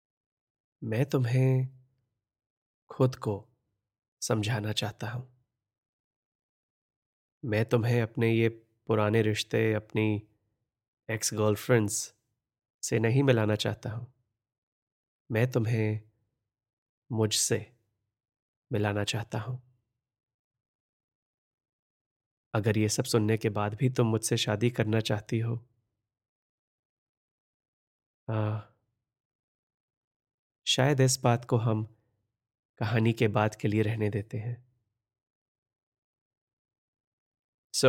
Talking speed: 85 wpm